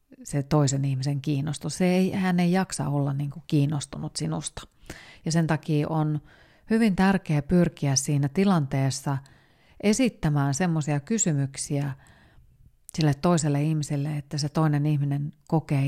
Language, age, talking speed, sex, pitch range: Finnish, 30-49, 120 wpm, female, 140-170 Hz